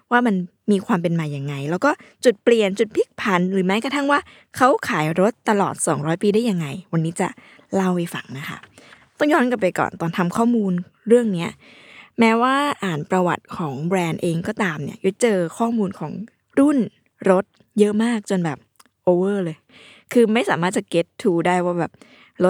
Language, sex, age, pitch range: Thai, female, 20-39, 175-225 Hz